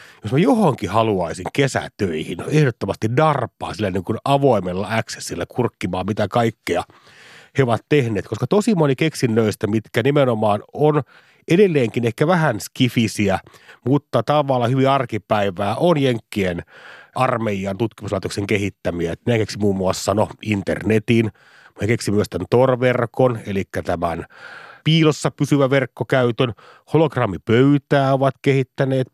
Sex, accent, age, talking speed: male, native, 30-49, 115 wpm